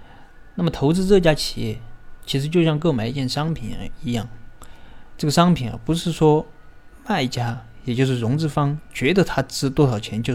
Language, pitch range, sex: Chinese, 110-150 Hz, male